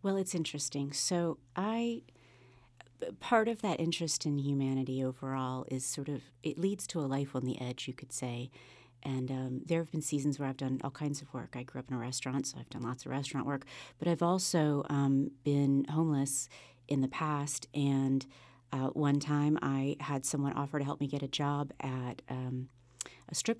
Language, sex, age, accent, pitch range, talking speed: English, female, 40-59, American, 130-160 Hz, 200 wpm